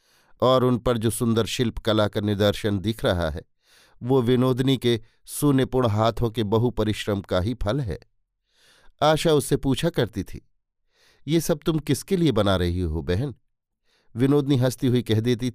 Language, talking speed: Hindi, 160 wpm